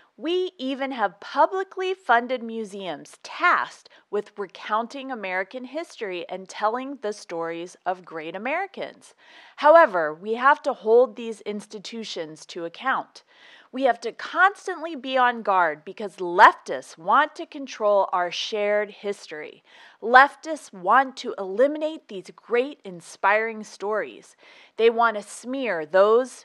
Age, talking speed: 30-49, 125 wpm